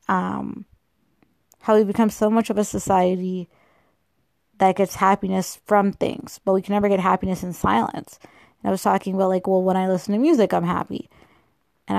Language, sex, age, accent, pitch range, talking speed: English, female, 20-39, American, 190-220 Hz, 185 wpm